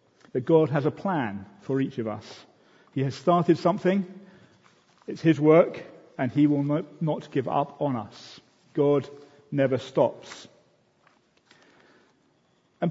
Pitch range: 125-160 Hz